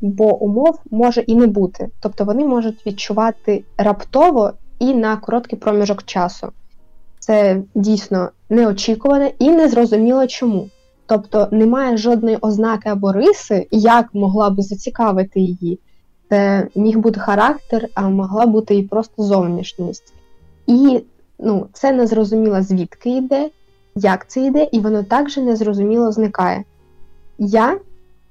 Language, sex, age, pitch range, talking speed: Ukrainian, female, 20-39, 200-235 Hz, 125 wpm